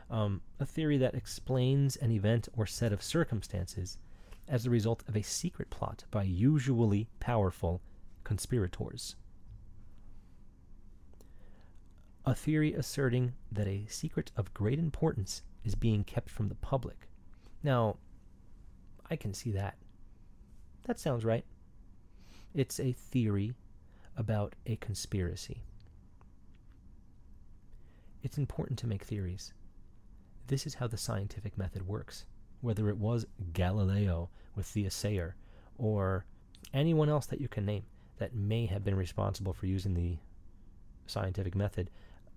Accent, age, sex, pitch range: American, 30-49, male, 95-120 Hz